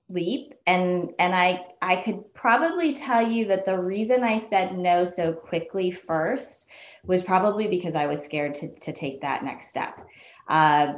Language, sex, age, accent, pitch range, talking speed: English, female, 20-39, American, 155-185 Hz, 170 wpm